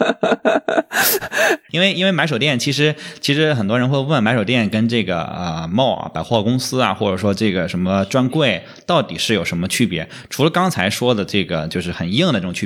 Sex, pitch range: male, 95-130 Hz